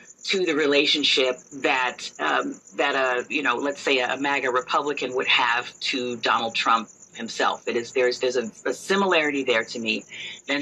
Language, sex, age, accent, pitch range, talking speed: English, female, 40-59, American, 135-175 Hz, 175 wpm